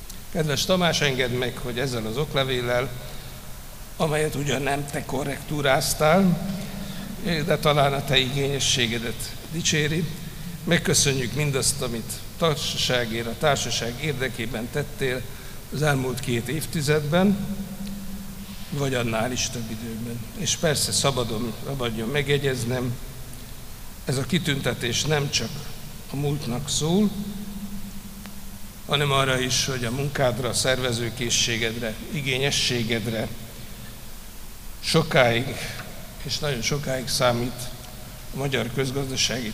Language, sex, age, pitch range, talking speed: Hungarian, male, 60-79, 120-145 Hz, 100 wpm